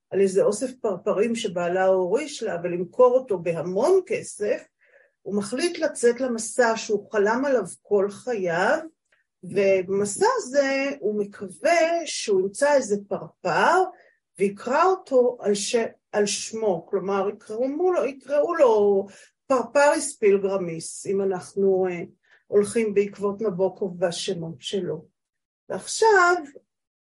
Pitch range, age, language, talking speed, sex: 195-270 Hz, 50-69, Hebrew, 105 wpm, female